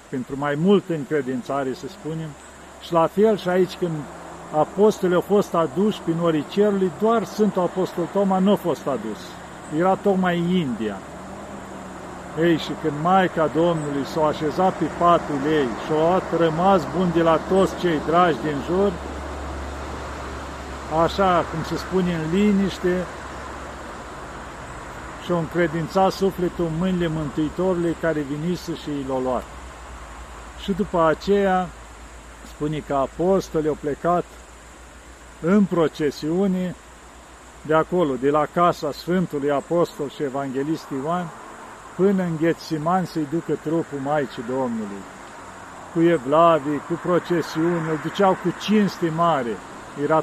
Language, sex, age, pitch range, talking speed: Romanian, male, 50-69, 140-180 Hz, 130 wpm